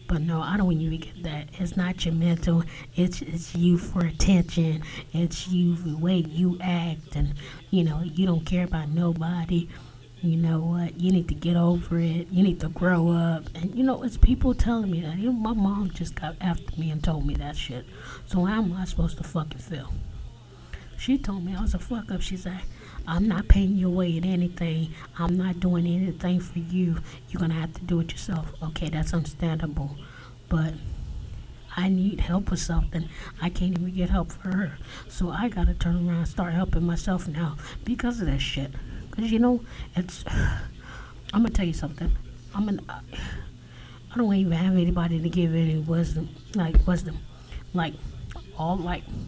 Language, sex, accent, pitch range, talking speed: English, female, American, 160-180 Hz, 200 wpm